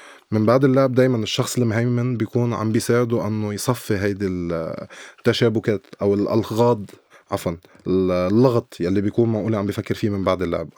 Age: 20-39